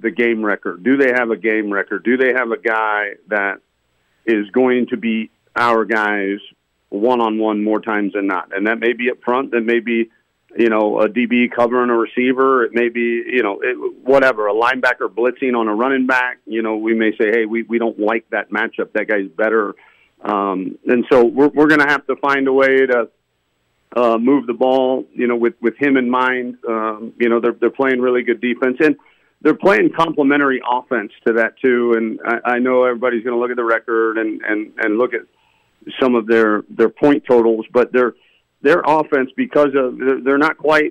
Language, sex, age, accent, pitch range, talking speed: English, male, 40-59, American, 115-130 Hz, 210 wpm